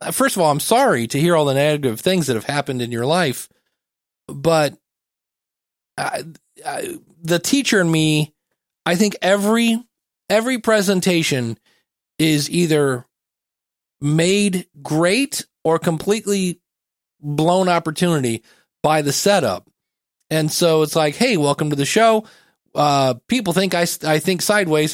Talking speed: 135 wpm